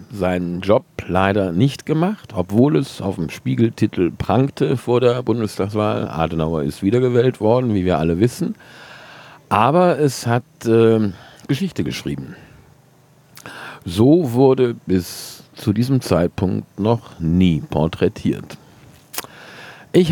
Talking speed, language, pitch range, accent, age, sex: 115 wpm, German, 85-120 Hz, German, 50-69, male